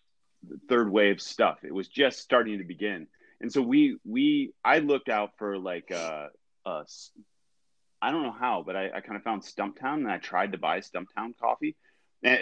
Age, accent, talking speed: 30-49, American, 195 wpm